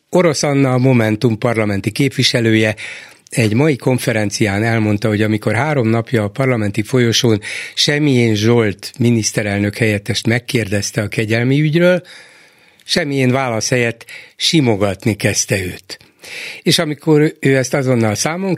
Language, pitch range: Hungarian, 110-140 Hz